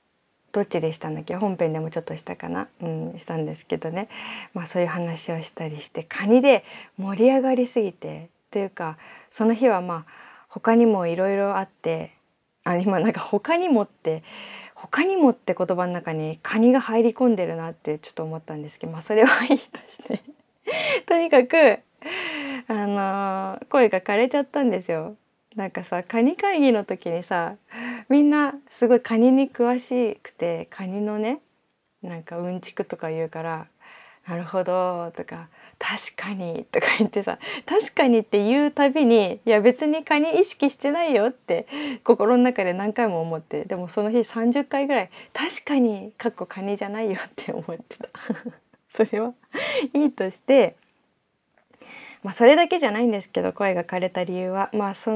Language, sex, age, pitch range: Japanese, female, 20-39, 180-255 Hz